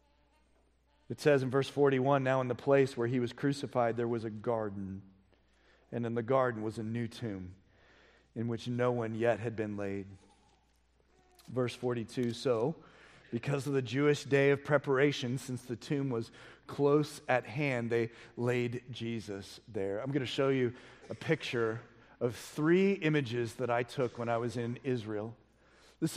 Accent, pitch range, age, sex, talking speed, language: American, 115-155 Hz, 40-59, male, 165 wpm, English